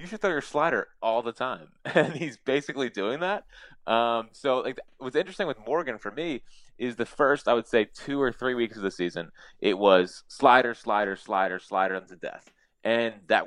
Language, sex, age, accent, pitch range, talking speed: English, male, 20-39, American, 90-110 Hz, 200 wpm